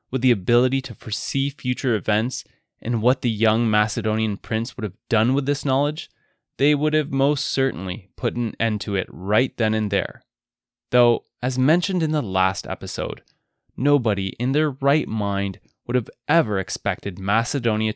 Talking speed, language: 165 wpm, English